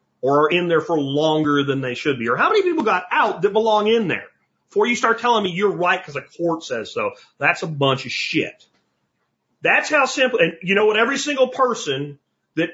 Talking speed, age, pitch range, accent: 225 wpm, 40-59, 130-205 Hz, American